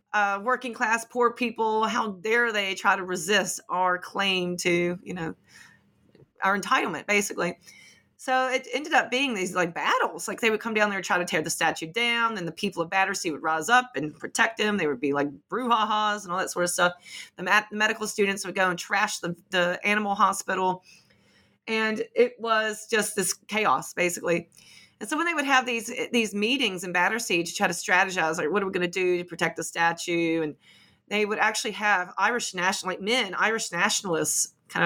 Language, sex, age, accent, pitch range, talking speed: English, female, 30-49, American, 170-215 Hz, 200 wpm